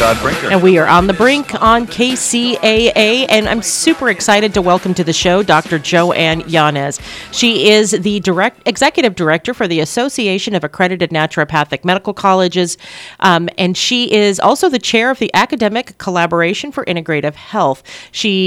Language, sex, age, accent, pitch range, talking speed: English, female, 40-59, American, 170-220 Hz, 160 wpm